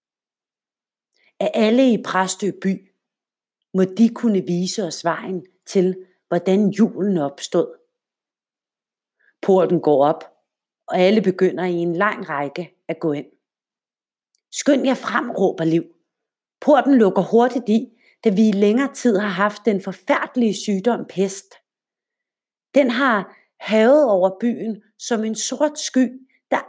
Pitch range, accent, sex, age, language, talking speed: 180-240 Hz, Danish, female, 40-59, English, 130 wpm